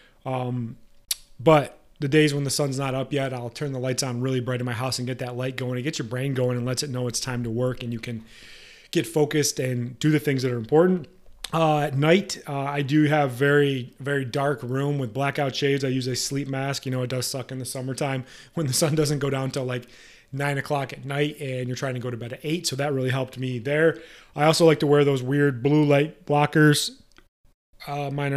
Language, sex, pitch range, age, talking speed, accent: English, male, 125-145 Hz, 30-49, 245 wpm, American